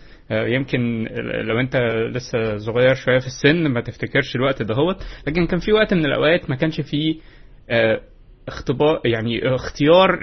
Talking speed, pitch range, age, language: 145 wpm, 120-155 Hz, 20-39, Arabic